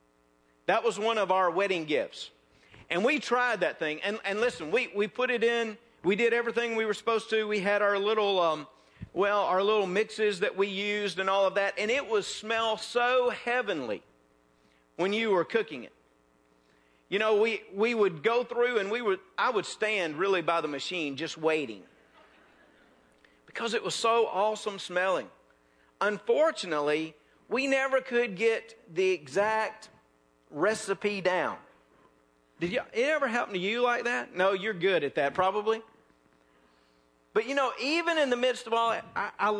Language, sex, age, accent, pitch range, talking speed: English, male, 50-69, American, 165-240 Hz, 175 wpm